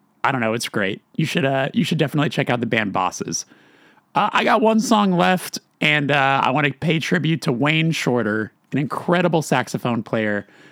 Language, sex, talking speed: English, male, 200 wpm